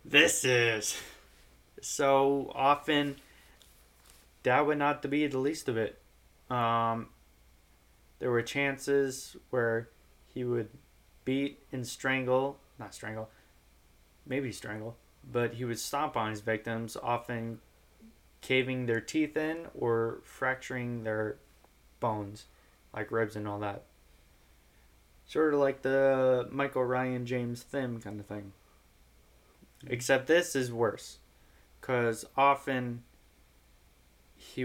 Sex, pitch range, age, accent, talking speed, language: male, 100-135 Hz, 20-39, American, 115 wpm, English